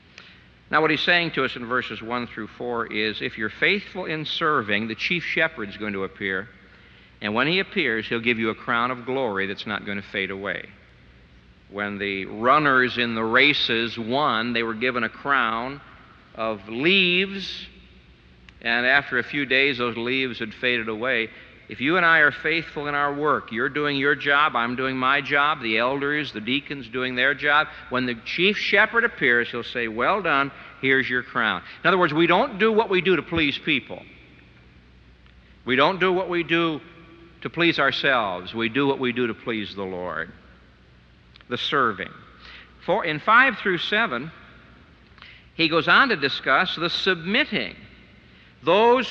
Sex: male